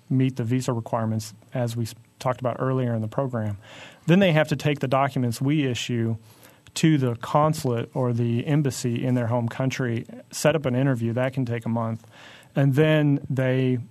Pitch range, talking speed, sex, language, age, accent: 120-140 Hz, 185 wpm, male, English, 30-49, American